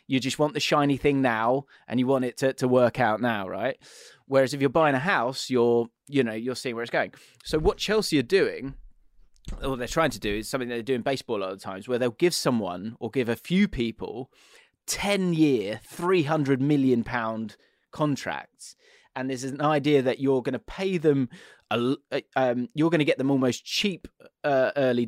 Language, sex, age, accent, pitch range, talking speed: English, male, 20-39, British, 120-155 Hz, 215 wpm